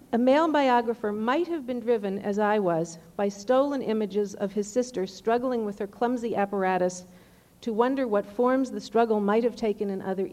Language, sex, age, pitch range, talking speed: English, female, 50-69, 205-250 Hz, 185 wpm